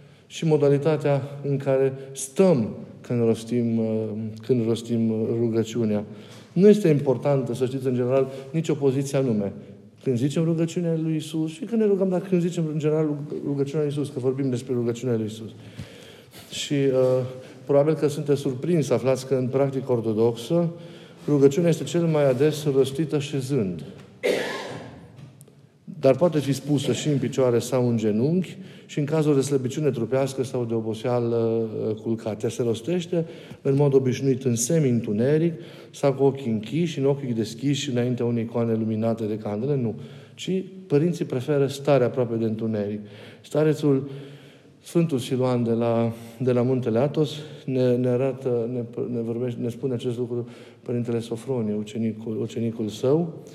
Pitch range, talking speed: 120-150 Hz, 150 wpm